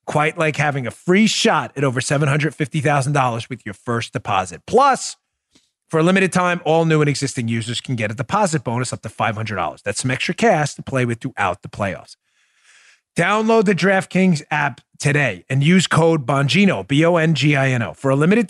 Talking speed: 175 wpm